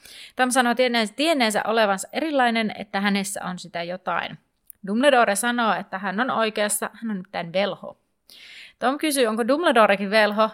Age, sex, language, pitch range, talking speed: 30-49, female, Finnish, 195-250 Hz, 140 wpm